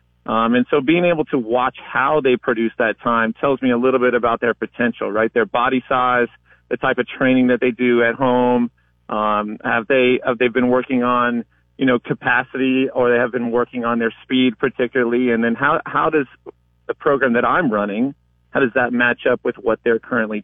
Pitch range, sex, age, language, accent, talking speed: 115-135 Hz, male, 40-59, English, American, 210 wpm